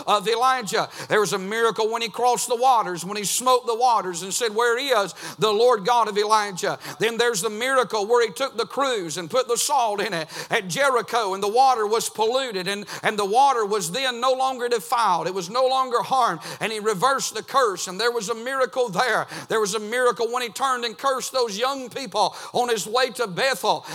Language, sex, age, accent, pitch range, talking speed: English, male, 50-69, American, 210-260 Hz, 225 wpm